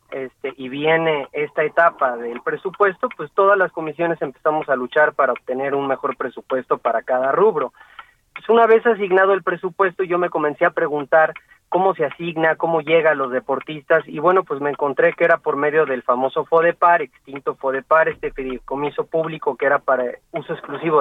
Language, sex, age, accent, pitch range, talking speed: Spanish, male, 30-49, Mexican, 140-175 Hz, 180 wpm